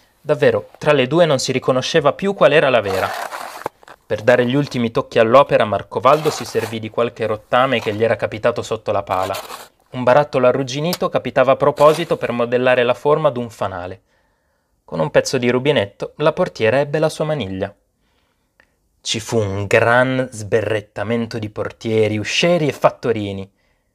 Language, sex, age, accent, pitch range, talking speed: Italian, male, 30-49, native, 100-145 Hz, 160 wpm